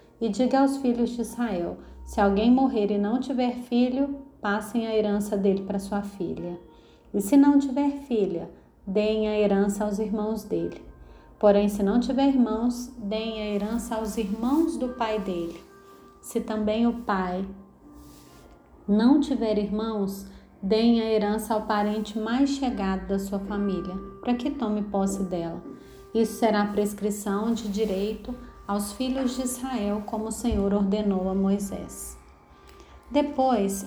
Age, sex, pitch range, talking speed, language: 30-49, female, 200-245 Hz, 145 wpm, Portuguese